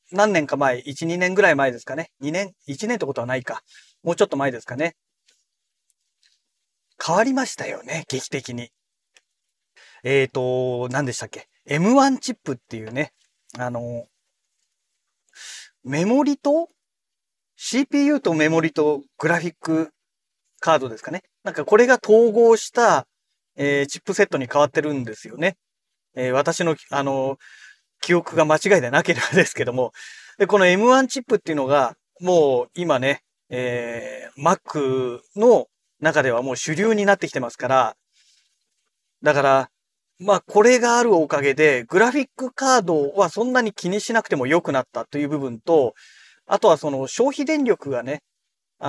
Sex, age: male, 40-59